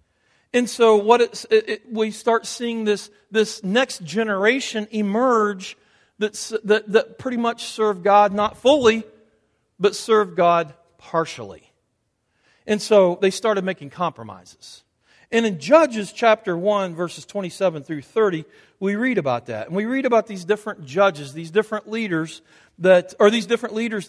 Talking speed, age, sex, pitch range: 150 wpm, 40-59, male, 175-220 Hz